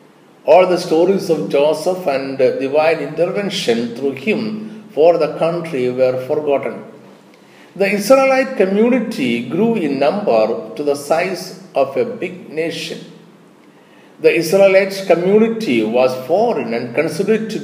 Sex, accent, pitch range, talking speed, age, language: male, Indian, 135-210 Hz, 125 wpm, 50-69, English